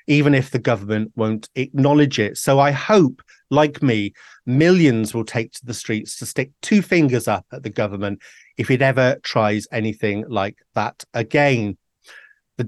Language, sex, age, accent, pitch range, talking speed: English, male, 30-49, British, 115-150 Hz, 165 wpm